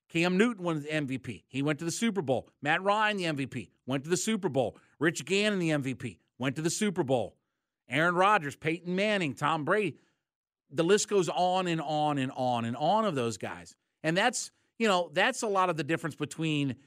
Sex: male